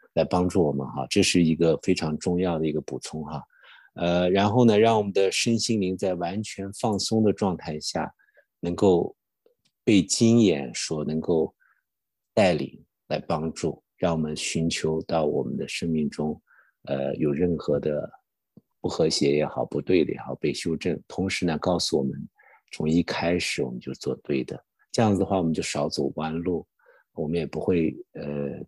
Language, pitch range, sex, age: English, 80-95 Hz, male, 50-69